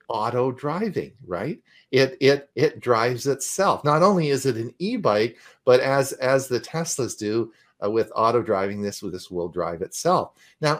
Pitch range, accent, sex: 110-150 Hz, American, male